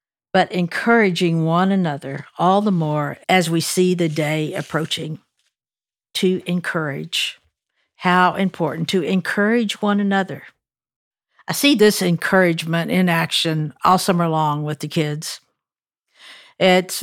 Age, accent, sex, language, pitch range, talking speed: 60-79, American, female, English, 165-215 Hz, 120 wpm